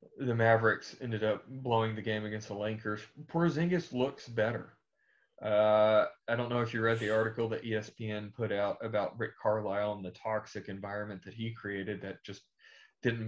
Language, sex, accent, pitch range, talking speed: English, male, American, 105-115 Hz, 175 wpm